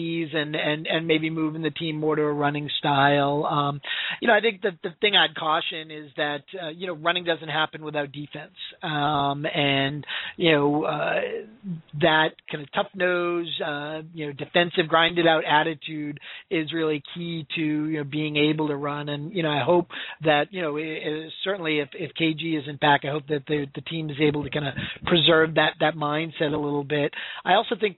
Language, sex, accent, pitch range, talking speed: English, male, American, 150-170 Hz, 205 wpm